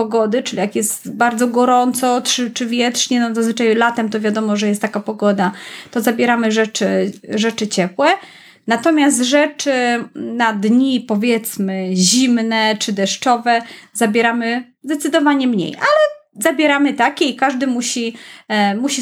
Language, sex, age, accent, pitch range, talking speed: Polish, female, 30-49, native, 220-275 Hz, 130 wpm